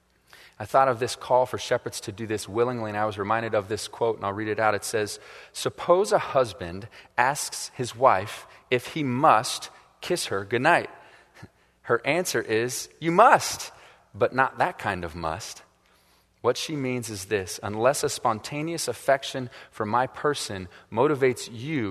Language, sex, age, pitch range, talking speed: English, male, 30-49, 105-130 Hz, 170 wpm